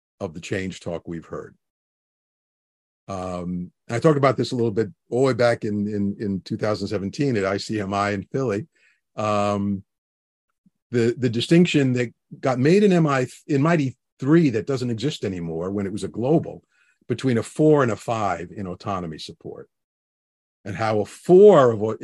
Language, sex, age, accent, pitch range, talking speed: English, male, 50-69, American, 100-130 Hz, 165 wpm